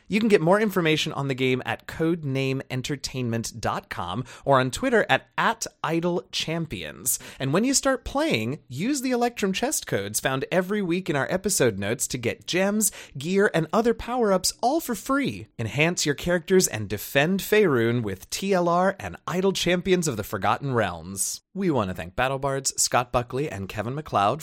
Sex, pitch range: male, 115-180 Hz